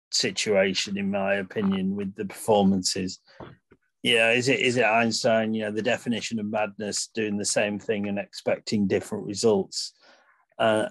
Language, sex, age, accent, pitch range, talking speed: English, male, 40-59, British, 100-115 Hz, 155 wpm